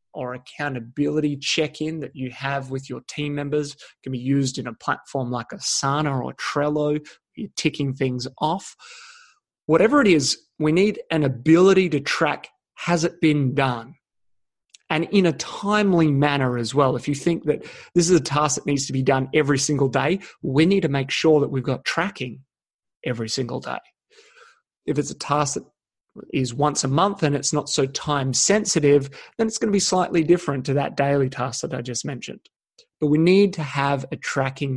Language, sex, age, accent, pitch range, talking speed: English, male, 30-49, Australian, 135-175 Hz, 190 wpm